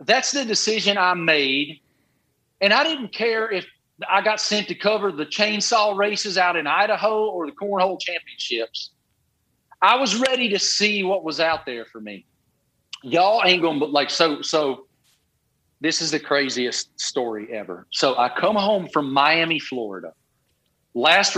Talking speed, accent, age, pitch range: 155 wpm, American, 40-59, 145-200 Hz